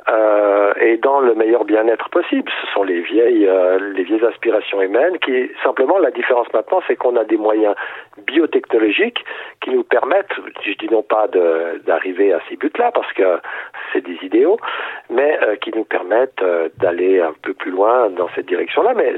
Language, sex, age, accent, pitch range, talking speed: French, male, 50-69, French, 345-445 Hz, 185 wpm